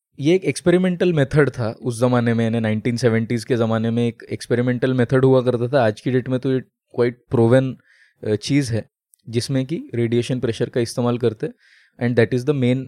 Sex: male